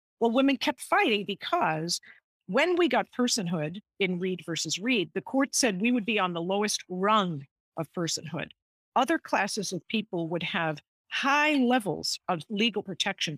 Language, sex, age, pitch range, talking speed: English, female, 50-69, 170-225 Hz, 160 wpm